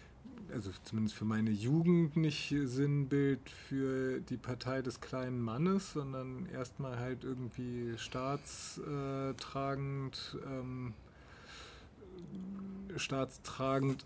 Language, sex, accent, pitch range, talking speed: German, male, German, 125-150 Hz, 80 wpm